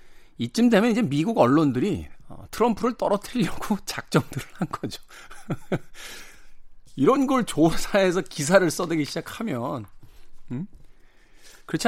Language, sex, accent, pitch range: Korean, male, native, 110-165 Hz